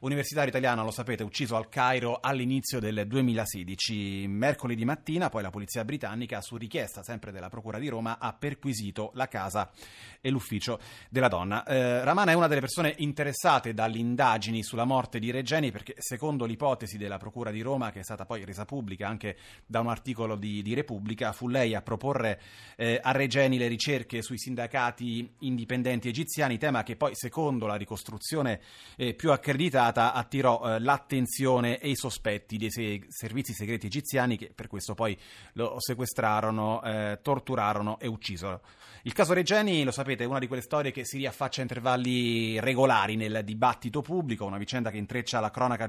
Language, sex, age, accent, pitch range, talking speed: Italian, male, 30-49, native, 110-130 Hz, 175 wpm